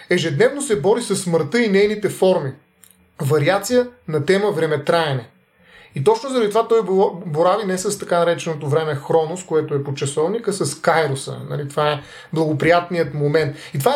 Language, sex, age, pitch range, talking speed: Bulgarian, male, 30-49, 155-200 Hz, 165 wpm